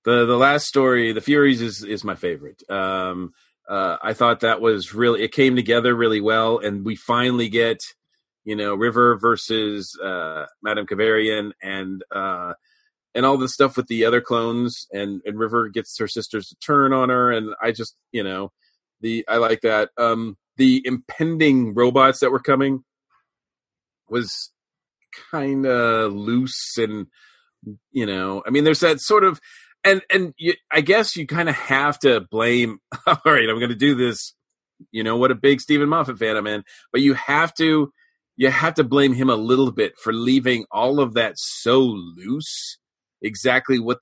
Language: English